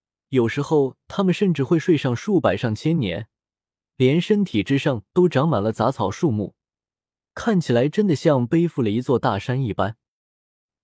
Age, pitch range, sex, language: 20-39, 115-165 Hz, male, Chinese